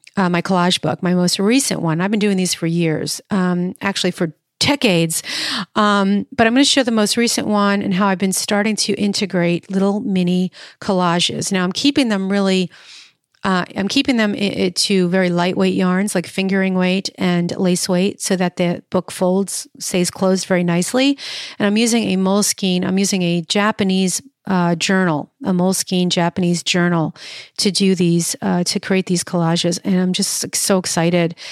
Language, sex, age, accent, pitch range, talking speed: English, female, 40-59, American, 175-205 Hz, 180 wpm